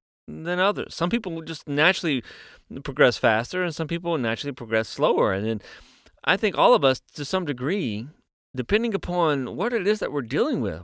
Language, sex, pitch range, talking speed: English, male, 100-160 Hz, 190 wpm